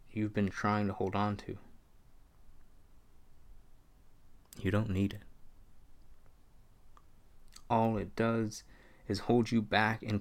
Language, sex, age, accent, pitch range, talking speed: English, male, 20-39, American, 90-110 Hz, 110 wpm